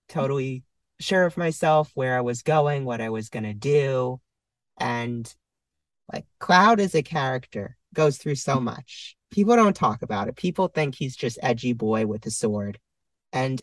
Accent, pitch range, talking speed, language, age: American, 135-180 Hz, 165 wpm, English, 30-49